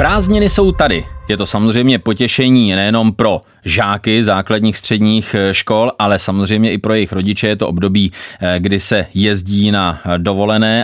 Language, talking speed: Czech, 150 wpm